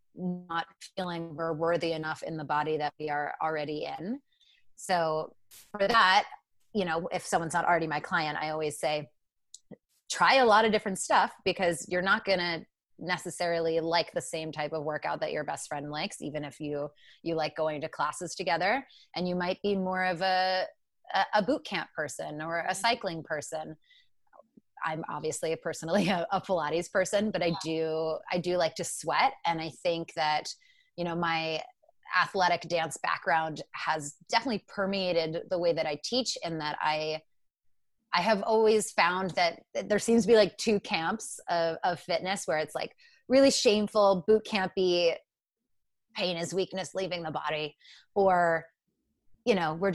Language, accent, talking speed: English, American, 170 wpm